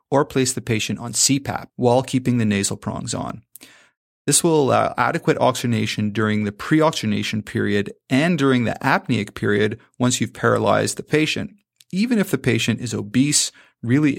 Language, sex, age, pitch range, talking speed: English, male, 30-49, 110-135 Hz, 160 wpm